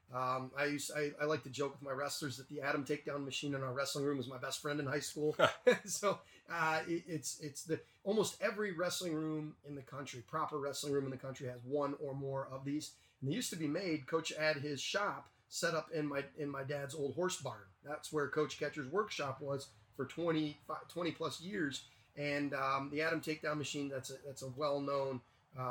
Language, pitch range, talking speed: English, 135-155 Hz, 220 wpm